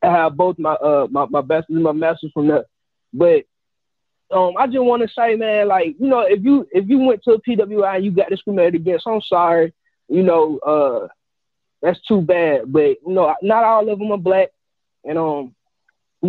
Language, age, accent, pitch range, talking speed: English, 20-39, American, 165-225 Hz, 210 wpm